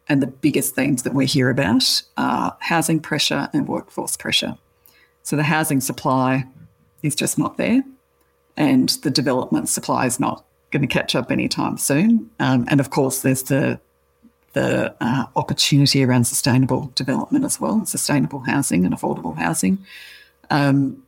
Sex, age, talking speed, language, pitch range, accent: female, 50-69, 155 wpm, English, 130-155 Hz, Australian